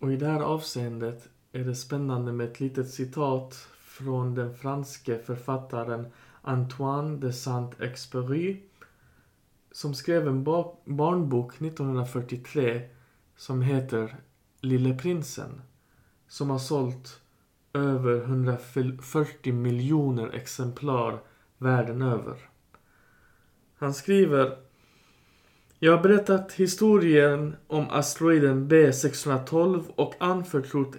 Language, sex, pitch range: Swedish, male, 125-155 Hz